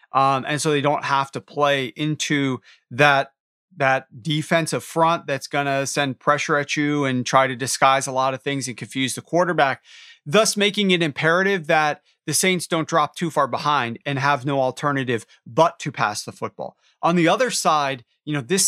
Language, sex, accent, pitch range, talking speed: English, male, American, 135-175 Hz, 195 wpm